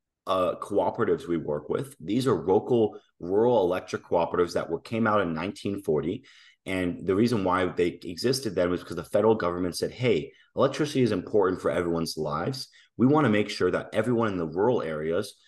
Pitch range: 85-120 Hz